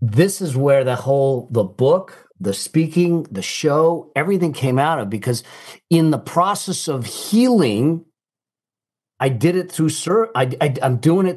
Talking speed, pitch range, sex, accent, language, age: 165 wpm, 110-150 Hz, male, American, English, 50-69